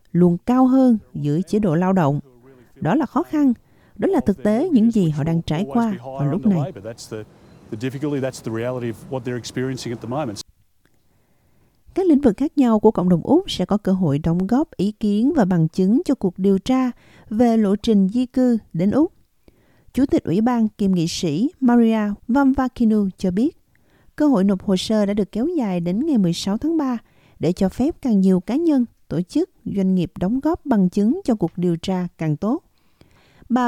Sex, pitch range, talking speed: female, 175-255 Hz, 185 wpm